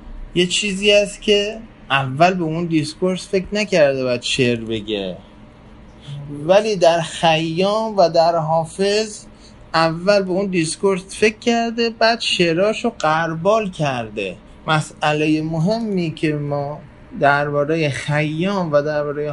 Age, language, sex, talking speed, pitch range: 20-39, Persian, male, 115 wpm, 140-190 Hz